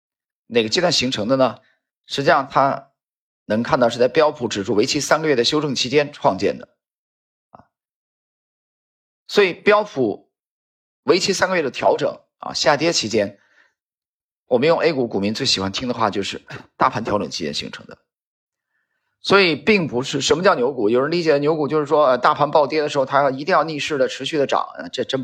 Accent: native